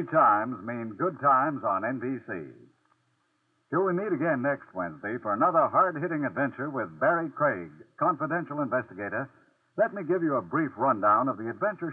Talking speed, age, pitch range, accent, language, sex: 155 wpm, 60-79, 145-195 Hz, American, English, male